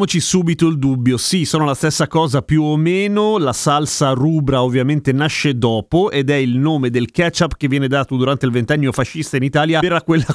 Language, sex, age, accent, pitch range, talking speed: Italian, male, 30-49, native, 130-175 Hz, 205 wpm